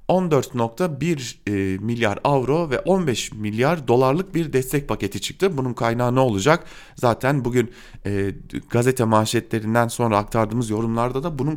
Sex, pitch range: male, 105-155 Hz